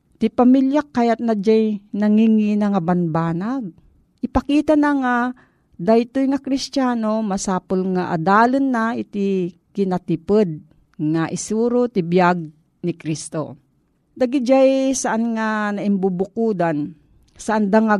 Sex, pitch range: female, 180-235 Hz